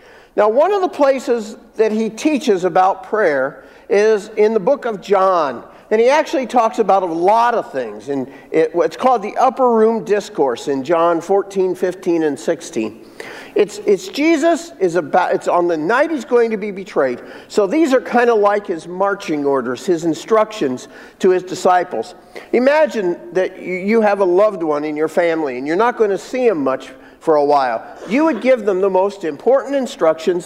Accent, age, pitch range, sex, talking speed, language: American, 50-69, 180-255 Hz, male, 190 wpm, English